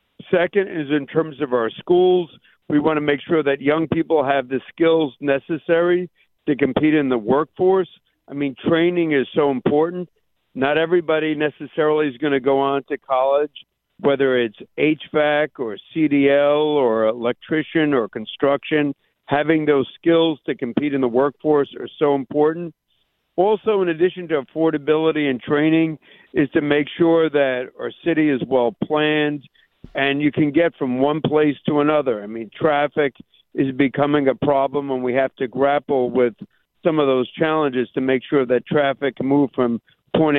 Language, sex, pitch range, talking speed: English, male, 140-165 Hz, 165 wpm